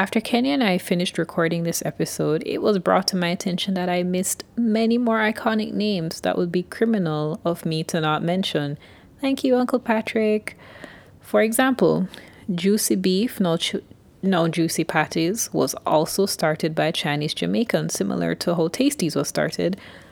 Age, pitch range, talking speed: 30-49, 160-195 Hz, 165 wpm